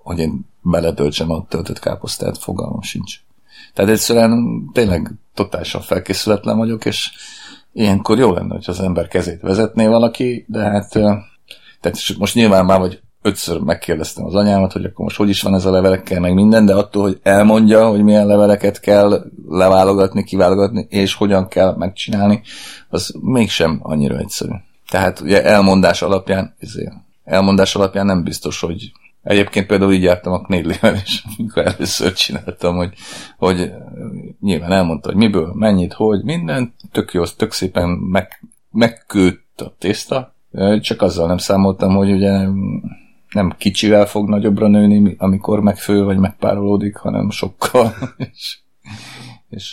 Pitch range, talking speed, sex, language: 95-105 Hz, 145 wpm, male, Hungarian